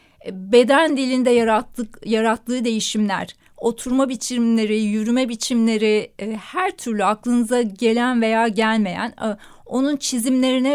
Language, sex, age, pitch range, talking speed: Turkish, female, 30-49, 215-255 Hz, 105 wpm